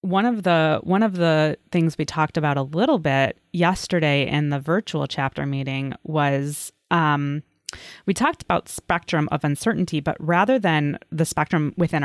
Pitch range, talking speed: 145-185 Hz, 165 wpm